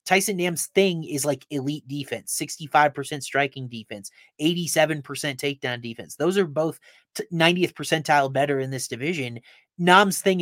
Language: English